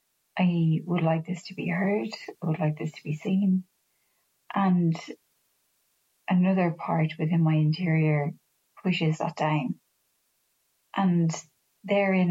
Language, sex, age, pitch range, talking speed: English, female, 30-49, 170-200 Hz, 120 wpm